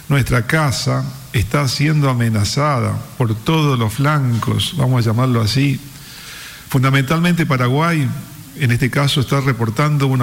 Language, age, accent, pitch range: Spanish, 50-69, Argentinian, 125-155 Hz